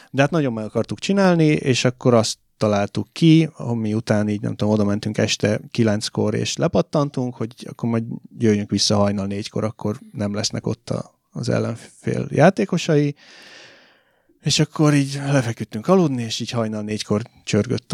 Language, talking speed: Hungarian, 155 wpm